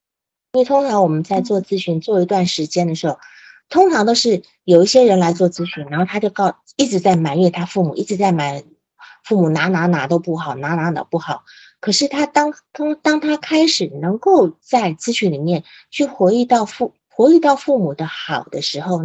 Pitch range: 160-215 Hz